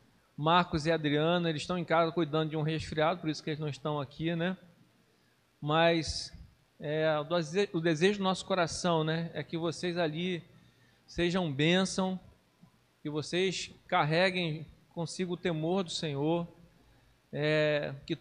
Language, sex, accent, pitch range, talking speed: Portuguese, male, Brazilian, 150-175 Hz, 135 wpm